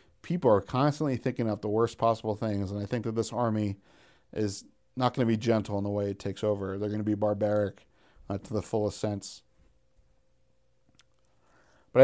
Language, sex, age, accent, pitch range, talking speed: English, male, 40-59, American, 110-135 Hz, 190 wpm